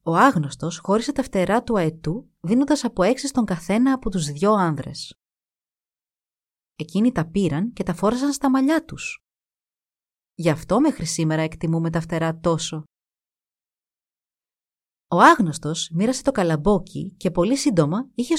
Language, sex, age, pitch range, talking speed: Greek, female, 30-49, 160-235 Hz, 135 wpm